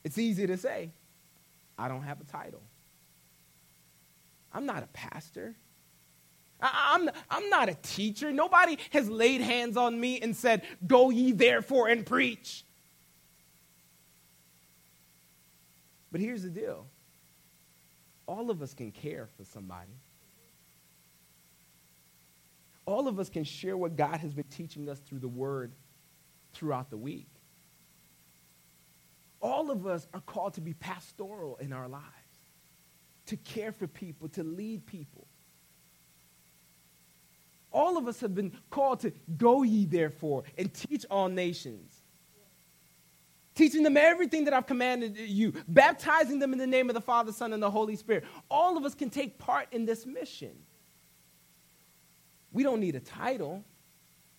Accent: American